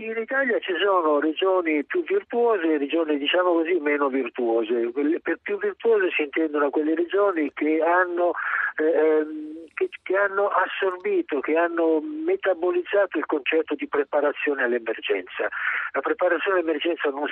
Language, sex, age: Italian, male, 50-69